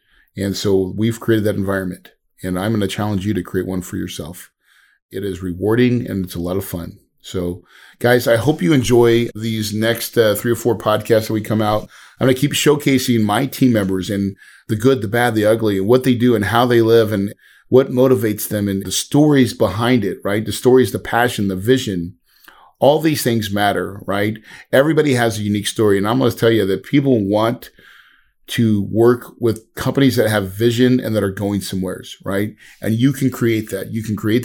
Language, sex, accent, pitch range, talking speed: English, male, American, 100-120 Hz, 215 wpm